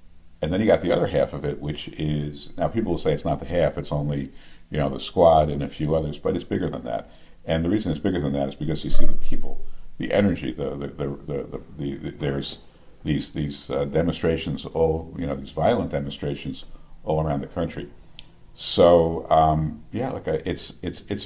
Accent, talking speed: American, 220 wpm